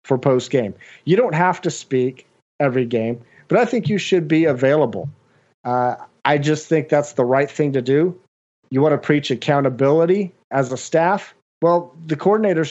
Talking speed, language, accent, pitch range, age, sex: 175 wpm, English, American, 125-165 Hz, 40-59, male